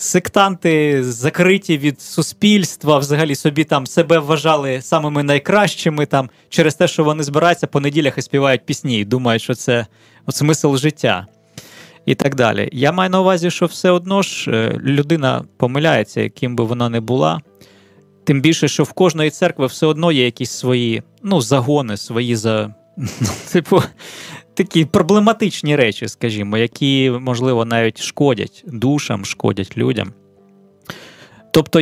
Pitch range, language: 120-165 Hz, Ukrainian